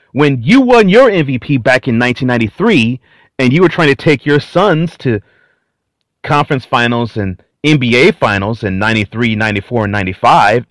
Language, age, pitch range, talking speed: English, 30-49, 125-180 Hz, 150 wpm